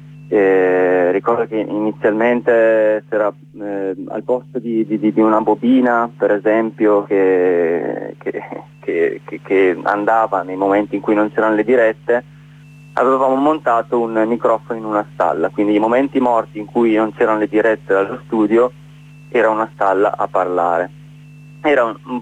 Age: 20-39